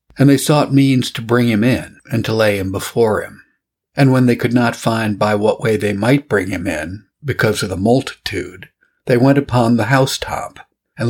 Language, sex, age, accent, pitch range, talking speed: English, male, 50-69, American, 105-130 Hz, 205 wpm